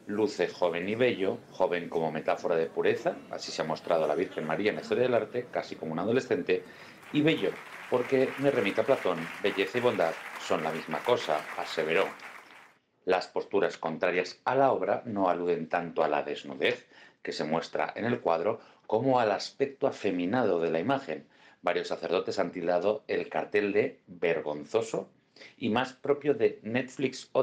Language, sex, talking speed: Spanish, male, 175 wpm